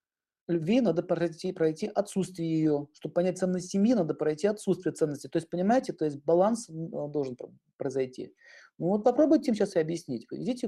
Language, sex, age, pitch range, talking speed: Russian, male, 40-59, 155-205 Hz, 170 wpm